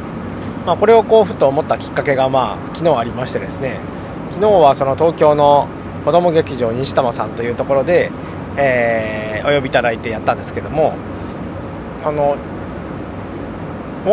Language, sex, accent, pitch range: Japanese, male, native, 115-175 Hz